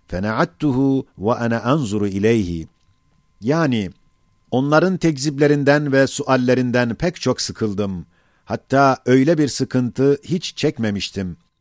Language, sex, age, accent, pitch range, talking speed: Turkish, male, 50-69, native, 115-140 Hz, 90 wpm